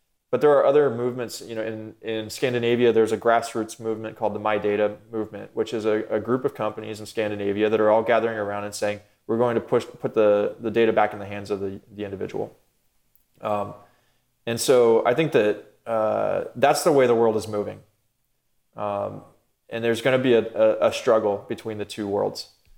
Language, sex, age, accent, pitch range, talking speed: English, male, 20-39, American, 105-115 Hz, 210 wpm